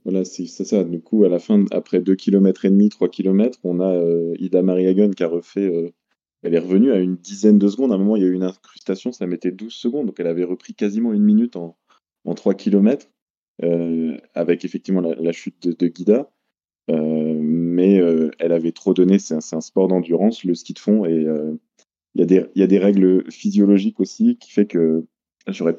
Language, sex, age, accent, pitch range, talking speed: French, male, 20-39, French, 85-100 Hz, 230 wpm